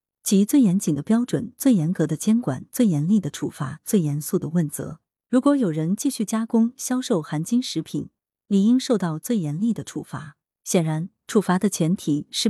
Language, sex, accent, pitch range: Chinese, female, native, 155-230 Hz